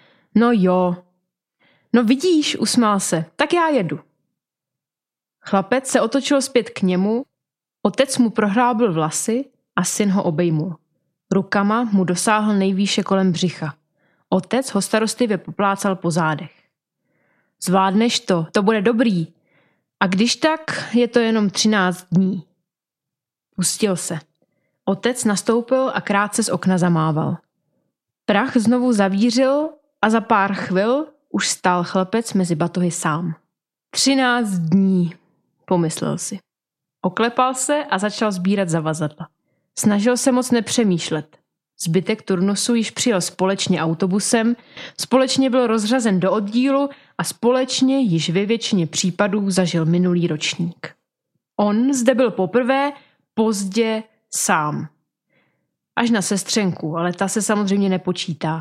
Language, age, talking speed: Czech, 20-39, 120 wpm